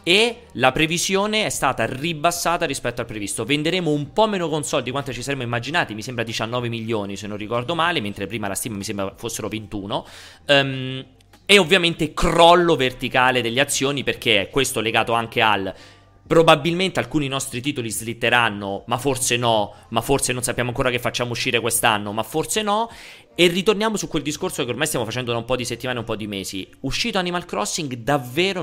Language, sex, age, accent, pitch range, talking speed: Italian, male, 30-49, native, 115-160 Hz, 190 wpm